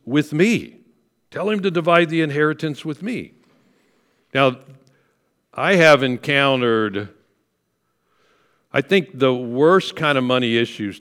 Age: 60-79